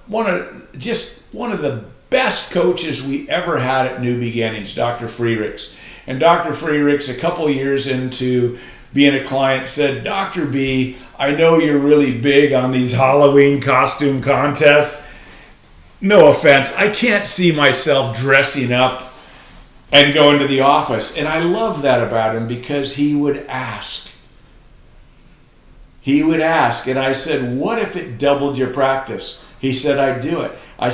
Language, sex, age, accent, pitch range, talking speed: English, male, 50-69, American, 120-145 Hz, 155 wpm